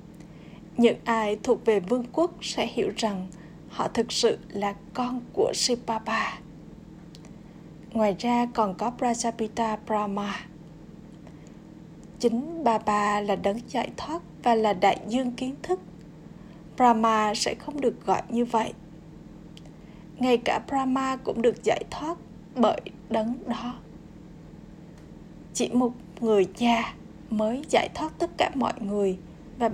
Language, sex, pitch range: Vietnamese, female, 200-245 Hz